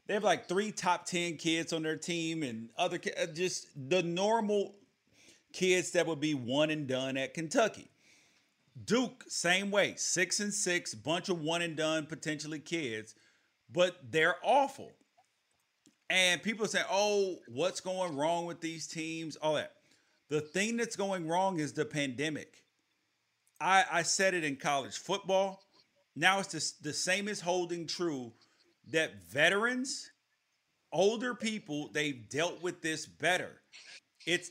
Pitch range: 145-185 Hz